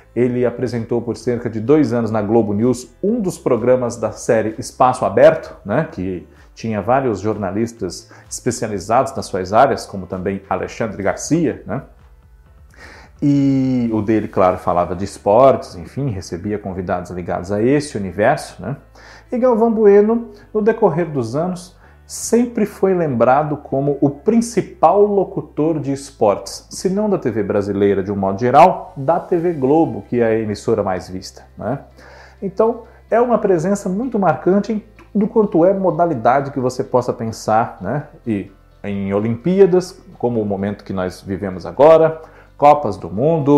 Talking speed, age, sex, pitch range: 150 wpm, 40-59, male, 100-160 Hz